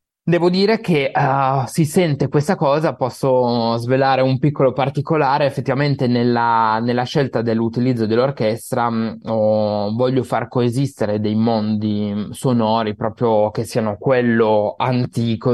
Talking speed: 120 wpm